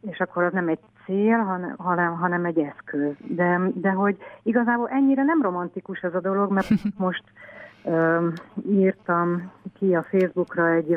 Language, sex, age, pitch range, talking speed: Hungarian, female, 60-79, 160-200 Hz, 155 wpm